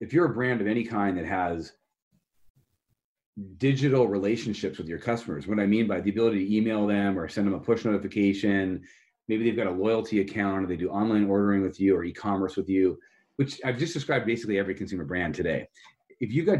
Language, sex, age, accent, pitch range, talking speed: English, male, 30-49, American, 95-120 Hz, 215 wpm